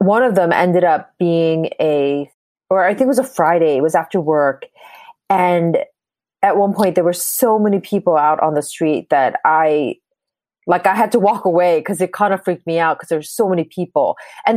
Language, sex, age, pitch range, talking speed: English, female, 30-49, 165-225 Hz, 220 wpm